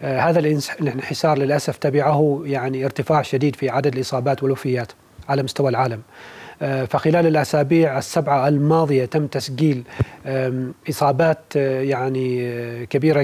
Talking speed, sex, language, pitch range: 105 wpm, male, Arabic, 135-155 Hz